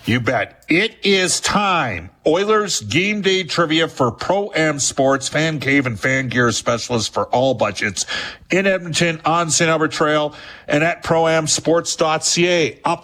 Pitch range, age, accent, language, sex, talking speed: 120-170 Hz, 50-69, American, English, male, 145 wpm